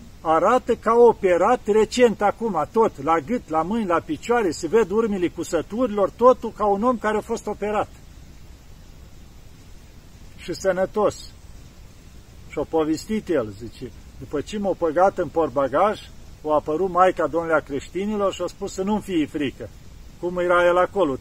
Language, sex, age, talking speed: Romanian, male, 50-69, 155 wpm